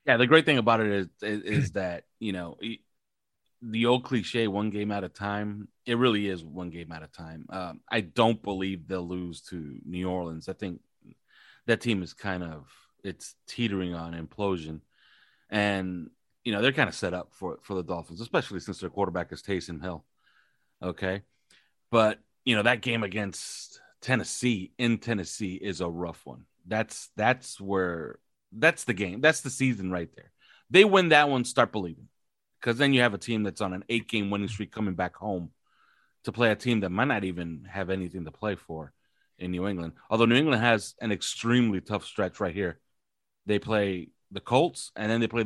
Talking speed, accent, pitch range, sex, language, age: 195 wpm, American, 90-115 Hz, male, English, 30-49